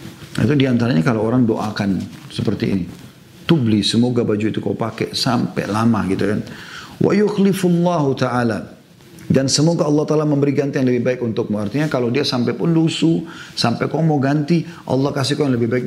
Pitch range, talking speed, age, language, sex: 115-150 Hz, 165 wpm, 40-59, Indonesian, male